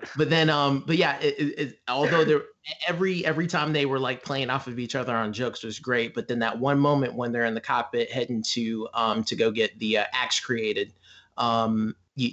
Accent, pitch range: American, 115-140 Hz